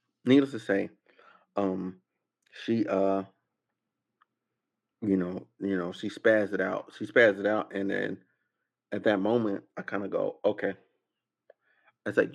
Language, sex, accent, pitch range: English, male, American, 95-120 Hz